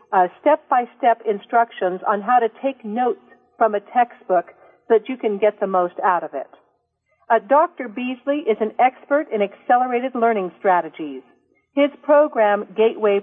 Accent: American